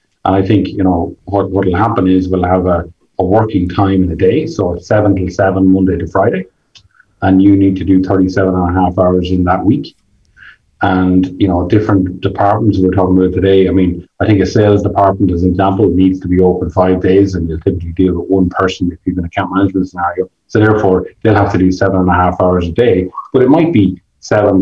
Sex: male